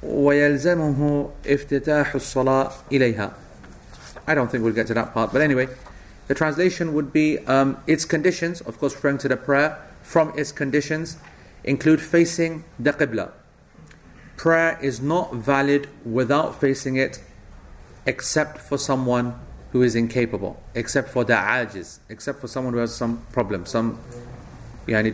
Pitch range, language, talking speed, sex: 110-145 Hz, English, 145 wpm, male